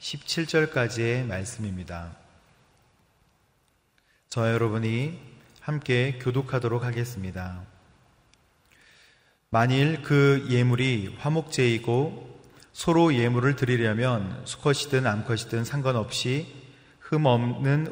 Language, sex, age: Korean, male, 30-49